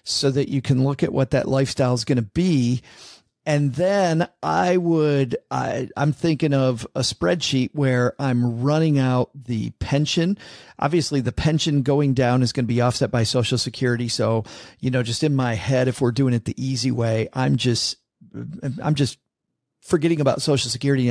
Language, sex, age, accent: English, male, 40-59, American